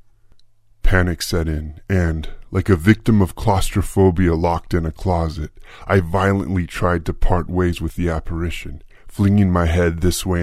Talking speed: 155 wpm